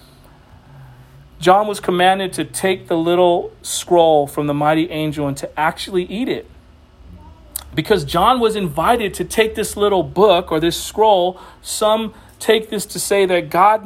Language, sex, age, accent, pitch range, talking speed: English, male, 40-59, American, 175-220 Hz, 155 wpm